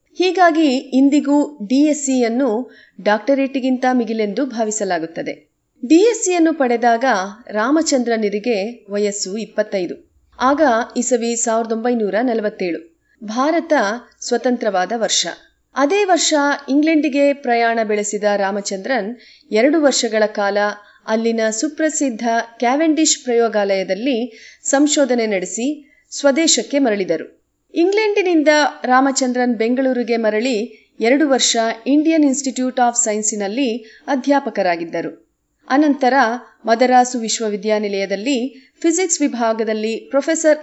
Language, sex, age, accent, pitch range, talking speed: Kannada, female, 30-49, native, 220-280 Hz, 75 wpm